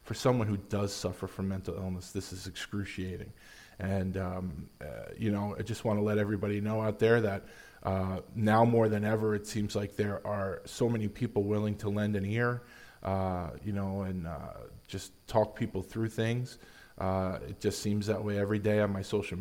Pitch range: 95-110 Hz